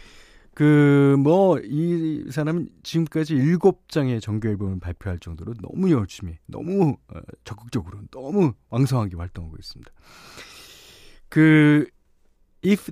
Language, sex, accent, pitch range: Korean, male, native, 100-155 Hz